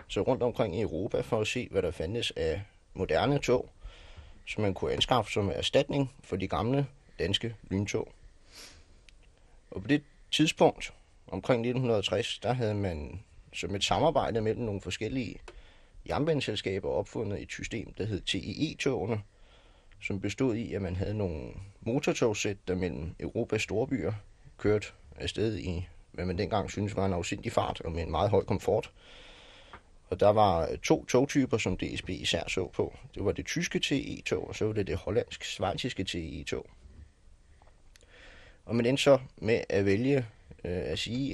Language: Danish